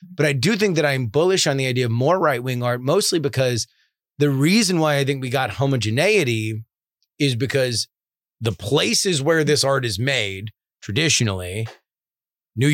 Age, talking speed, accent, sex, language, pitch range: 30-49, 165 wpm, American, male, English, 110-140 Hz